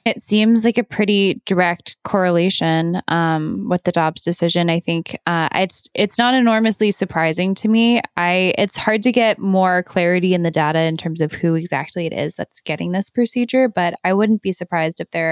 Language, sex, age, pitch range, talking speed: English, female, 10-29, 160-195 Hz, 195 wpm